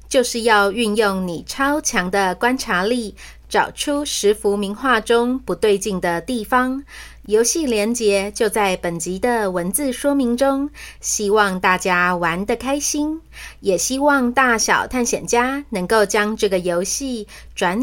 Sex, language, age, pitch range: female, Chinese, 30-49, 195-255 Hz